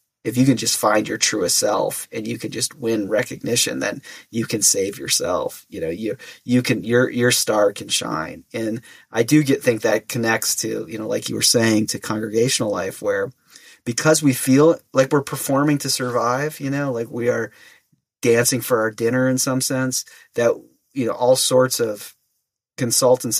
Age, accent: 30-49, American